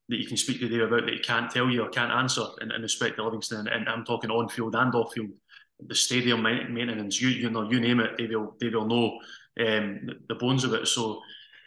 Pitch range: 110-120 Hz